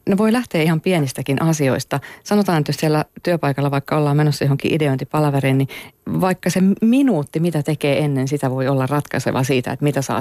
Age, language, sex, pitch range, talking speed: 40-59, Finnish, female, 145-195 Hz, 190 wpm